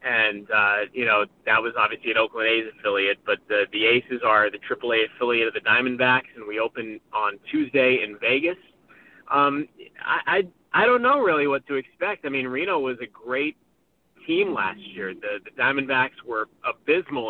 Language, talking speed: English, 185 wpm